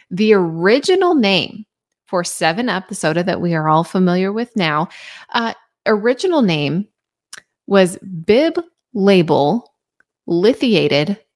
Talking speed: 110 wpm